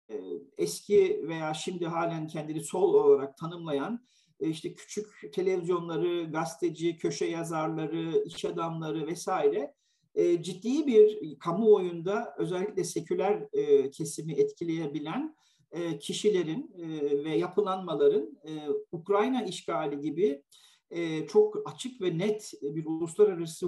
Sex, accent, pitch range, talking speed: male, native, 155-235 Hz, 90 wpm